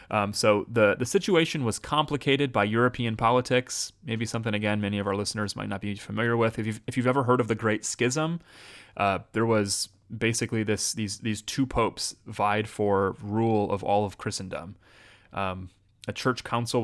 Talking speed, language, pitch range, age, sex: 185 wpm, English, 105-120 Hz, 30-49, male